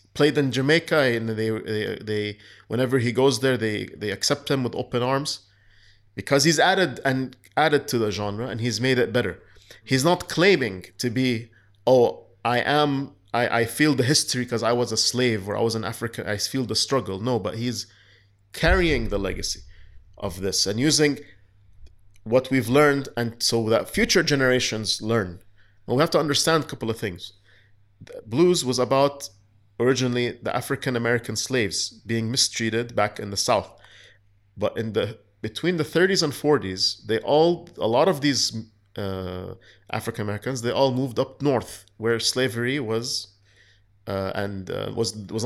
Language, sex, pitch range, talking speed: English, male, 105-130 Hz, 170 wpm